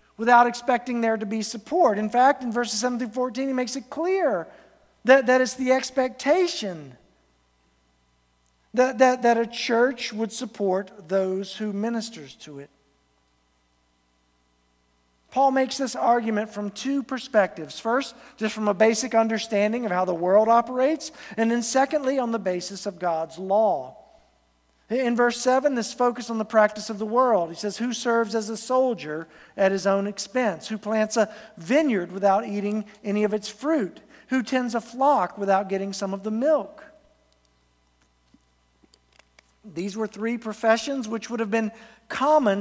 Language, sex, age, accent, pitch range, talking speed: English, male, 50-69, American, 190-245 Hz, 155 wpm